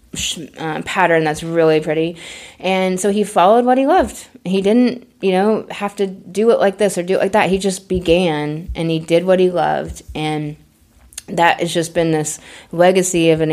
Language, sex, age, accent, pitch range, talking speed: English, female, 20-39, American, 160-185 Hz, 200 wpm